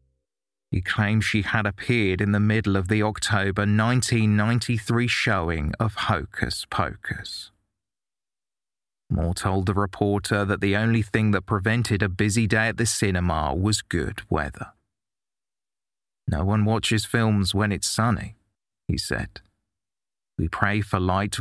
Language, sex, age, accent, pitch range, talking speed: English, male, 30-49, British, 95-110 Hz, 135 wpm